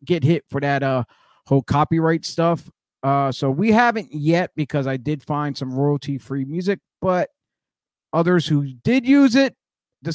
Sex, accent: male, American